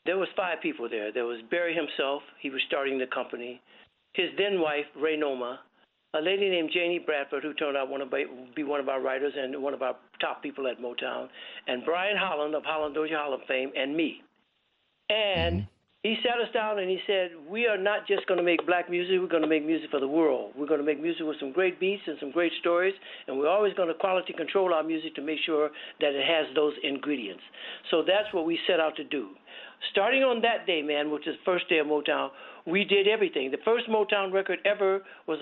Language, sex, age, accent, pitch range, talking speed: English, male, 60-79, American, 150-195 Hz, 225 wpm